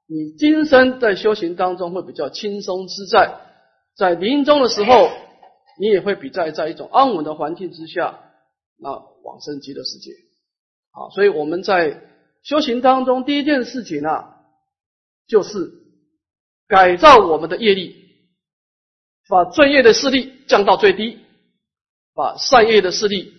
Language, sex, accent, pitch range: Chinese, male, native, 180-305 Hz